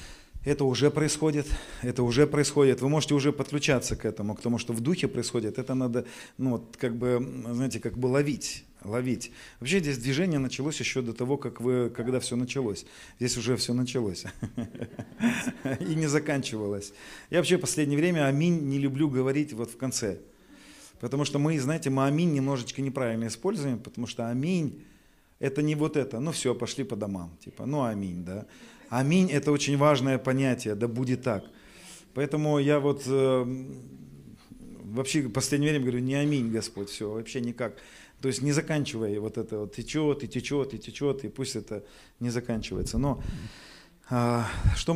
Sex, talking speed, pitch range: male, 170 wpm, 115-140 Hz